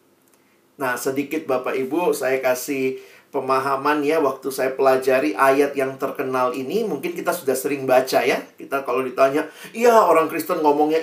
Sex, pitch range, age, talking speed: male, 145-225 Hz, 40-59, 150 wpm